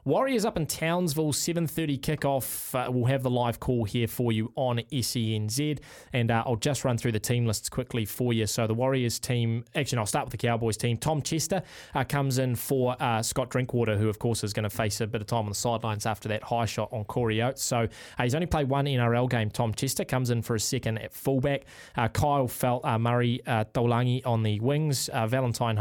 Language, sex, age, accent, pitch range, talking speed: English, male, 20-39, Australian, 110-135 Hz, 230 wpm